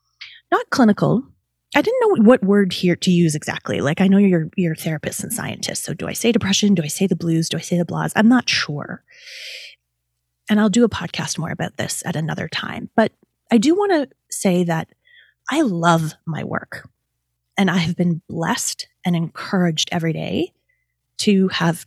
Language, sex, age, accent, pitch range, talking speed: English, female, 30-49, American, 160-205 Hz, 190 wpm